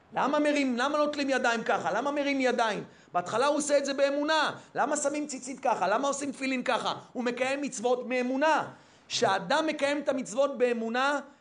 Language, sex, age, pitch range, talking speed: Hebrew, male, 40-59, 235-280 Hz, 170 wpm